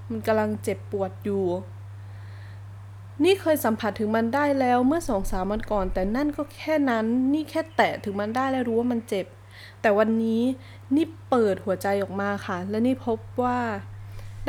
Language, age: Thai, 20-39